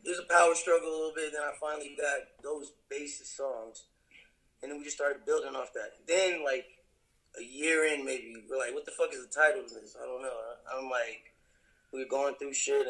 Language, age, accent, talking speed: English, 20-39, American, 235 wpm